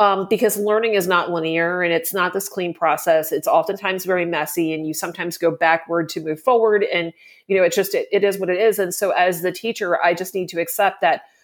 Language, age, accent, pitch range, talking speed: English, 30-49, American, 175-210 Hz, 240 wpm